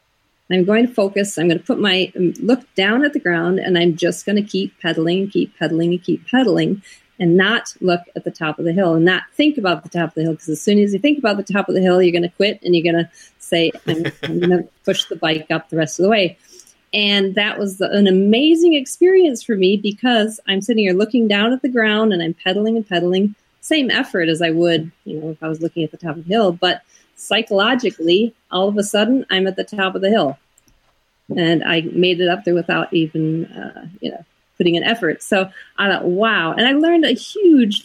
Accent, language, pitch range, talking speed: American, English, 170-220 Hz, 245 wpm